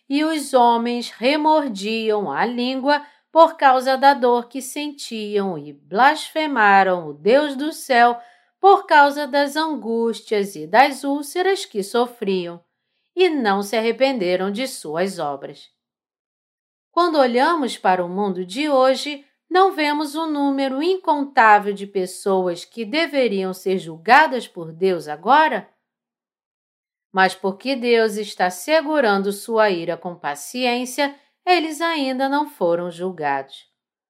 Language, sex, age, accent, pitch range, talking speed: Portuguese, female, 50-69, Brazilian, 190-290 Hz, 125 wpm